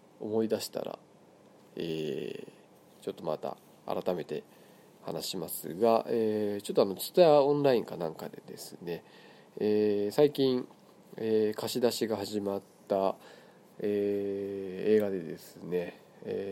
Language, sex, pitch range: Japanese, male, 100-140 Hz